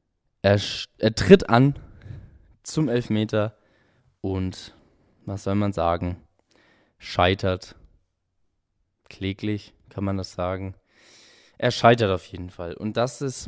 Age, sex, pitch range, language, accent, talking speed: 20-39, male, 95-125 Hz, German, German, 110 wpm